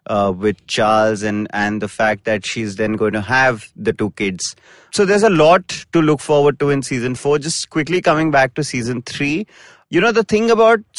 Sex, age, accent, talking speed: male, 30-49, Indian, 215 wpm